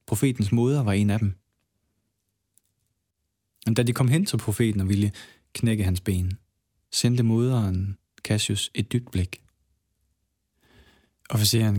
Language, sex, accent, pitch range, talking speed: Danish, male, native, 95-110 Hz, 120 wpm